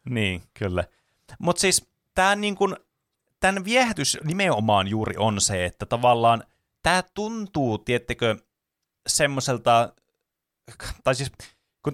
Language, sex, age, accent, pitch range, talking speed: Finnish, male, 30-49, native, 100-130 Hz, 100 wpm